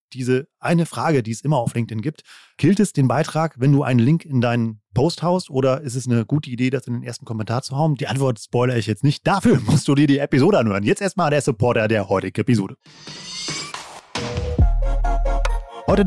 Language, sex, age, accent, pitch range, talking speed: German, male, 30-49, German, 120-155 Hz, 205 wpm